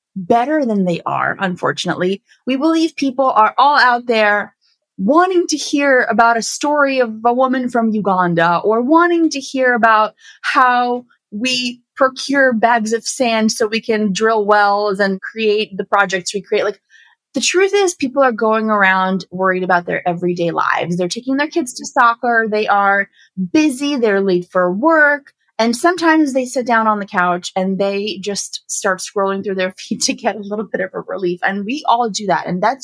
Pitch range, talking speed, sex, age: 200-265 Hz, 185 wpm, female, 30-49